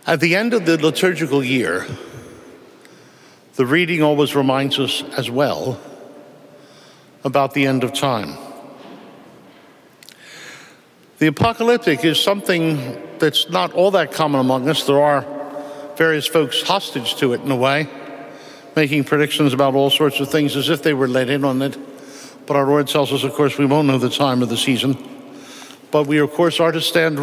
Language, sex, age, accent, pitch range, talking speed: English, male, 60-79, American, 140-165 Hz, 170 wpm